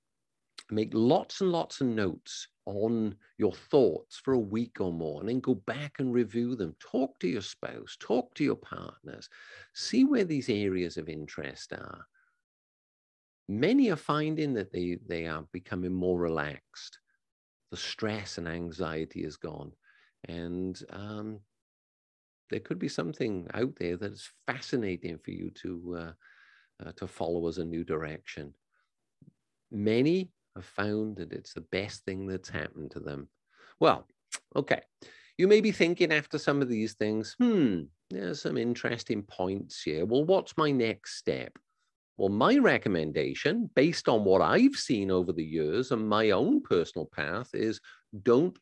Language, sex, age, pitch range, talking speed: English, male, 50-69, 90-130 Hz, 155 wpm